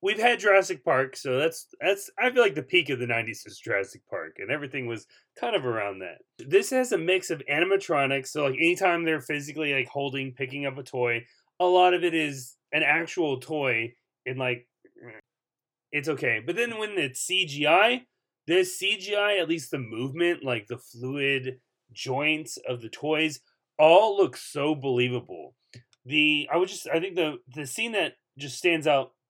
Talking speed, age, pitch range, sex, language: 180 wpm, 30-49, 125-180 Hz, male, English